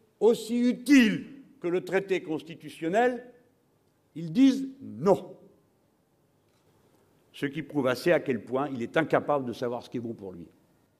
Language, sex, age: French, male, 60-79